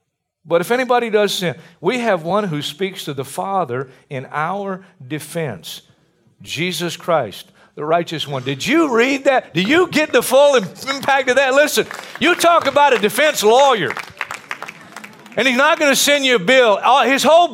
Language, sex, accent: English, male, American